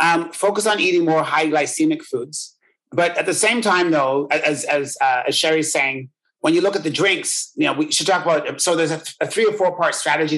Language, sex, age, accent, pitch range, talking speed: English, male, 30-49, American, 150-195 Hz, 245 wpm